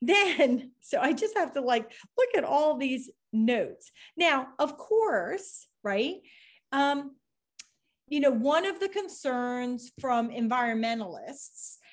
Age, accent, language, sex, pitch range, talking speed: 40-59, American, English, female, 235-300 Hz, 125 wpm